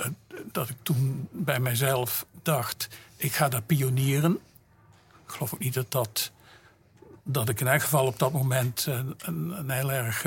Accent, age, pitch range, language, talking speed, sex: Dutch, 50-69, 125-150 Hz, Dutch, 165 wpm, male